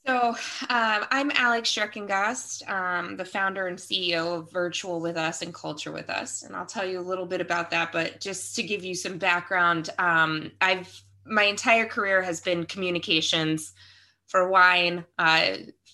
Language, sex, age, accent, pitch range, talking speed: English, female, 20-39, American, 165-185 Hz, 170 wpm